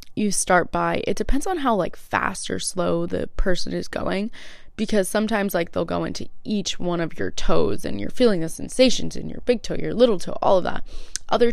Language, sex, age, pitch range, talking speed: English, female, 20-39, 175-210 Hz, 220 wpm